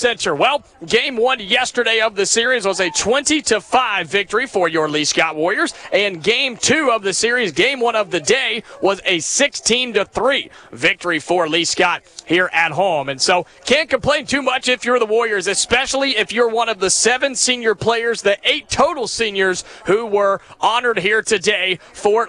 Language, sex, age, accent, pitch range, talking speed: English, male, 30-49, American, 165-215 Hz, 185 wpm